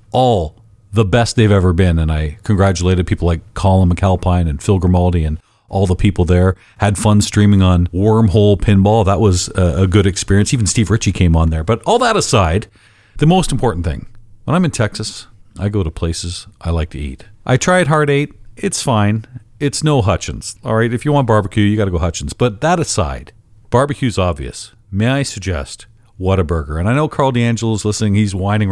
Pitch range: 95-130 Hz